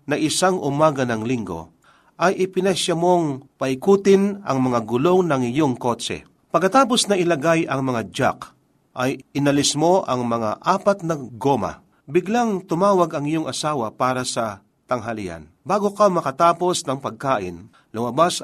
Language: Filipino